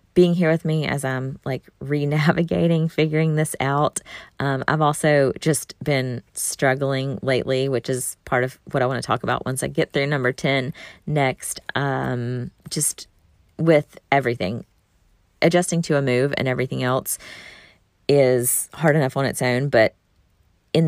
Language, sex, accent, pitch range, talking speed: English, female, American, 130-180 Hz, 155 wpm